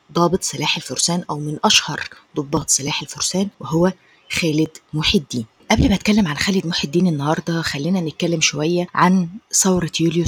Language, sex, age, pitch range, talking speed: Arabic, female, 20-39, 155-190 Hz, 145 wpm